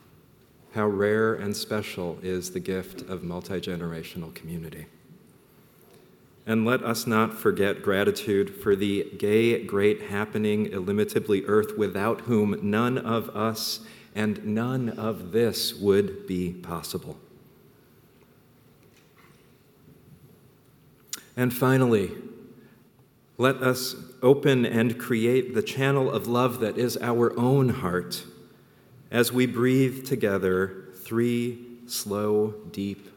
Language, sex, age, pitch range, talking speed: English, male, 40-59, 95-130 Hz, 105 wpm